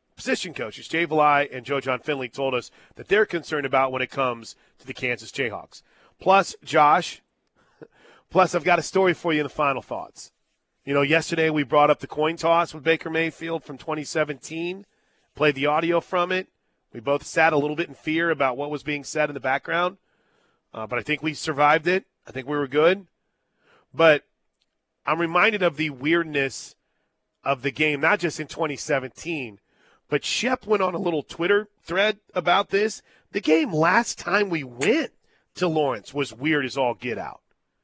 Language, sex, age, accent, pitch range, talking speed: English, male, 30-49, American, 140-170 Hz, 185 wpm